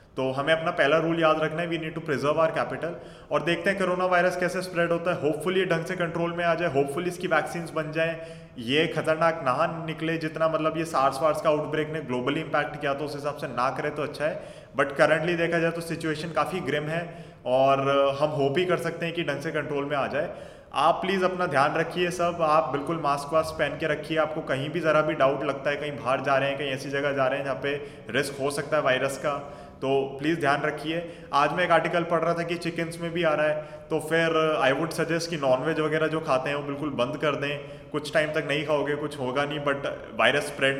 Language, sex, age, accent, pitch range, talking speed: Hindi, male, 30-49, native, 140-165 Hz, 245 wpm